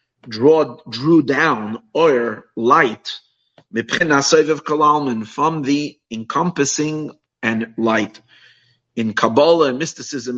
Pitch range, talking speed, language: 120-150 Hz, 80 wpm, English